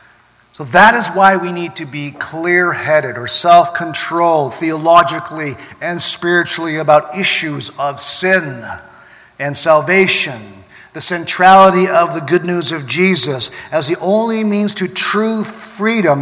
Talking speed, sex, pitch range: 130 wpm, male, 145-190 Hz